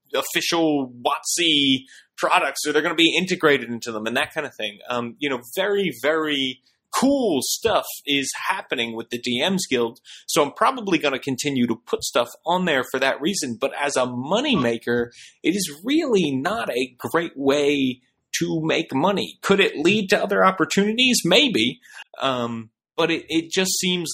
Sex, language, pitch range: male, English, 120-155 Hz